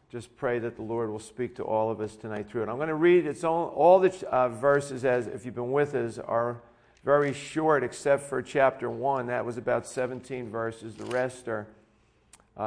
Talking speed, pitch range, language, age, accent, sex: 215 wpm, 120-150 Hz, English, 50-69, American, male